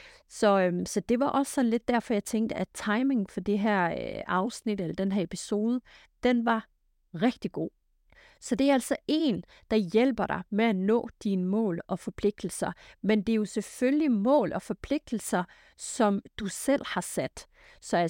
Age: 30-49